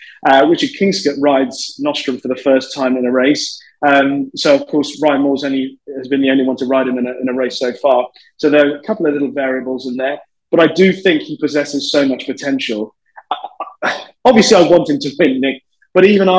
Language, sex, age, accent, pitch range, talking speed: English, male, 20-39, British, 140-190 Hz, 235 wpm